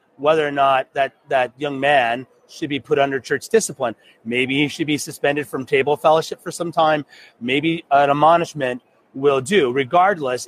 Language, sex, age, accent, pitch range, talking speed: English, male, 30-49, American, 135-165 Hz, 170 wpm